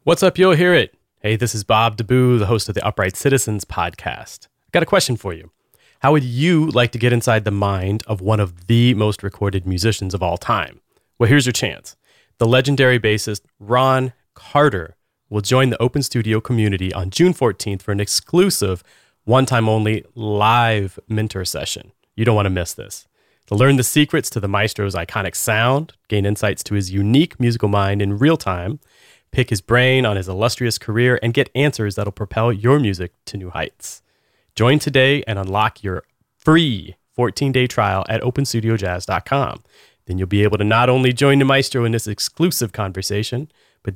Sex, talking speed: male, 185 wpm